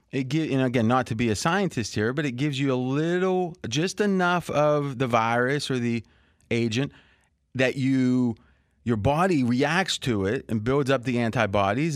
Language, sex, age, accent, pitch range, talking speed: English, male, 30-49, American, 115-150 Hz, 185 wpm